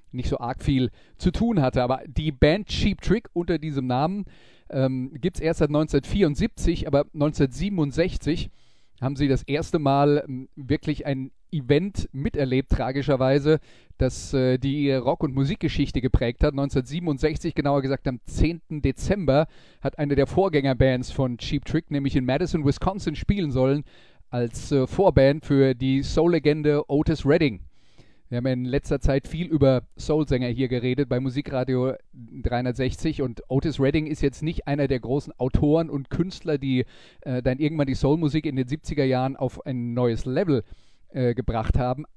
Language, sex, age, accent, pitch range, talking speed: German, male, 30-49, German, 125-150 Hz, 155 wpm